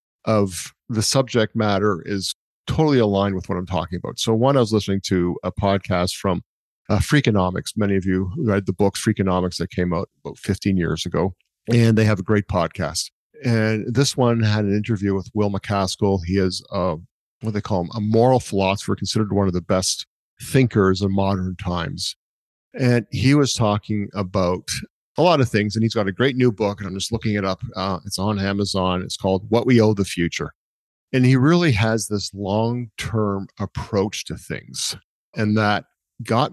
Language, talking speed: English, 190 wpm